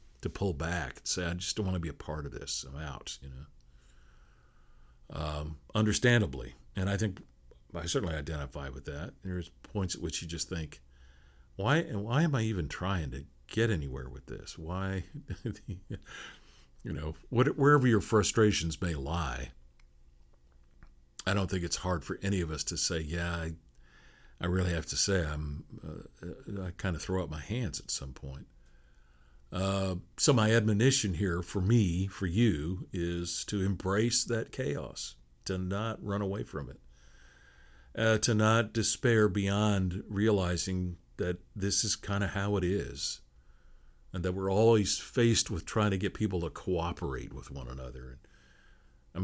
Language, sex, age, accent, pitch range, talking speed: English, male, 50-69, American, 70-100 Hz, 165 wpm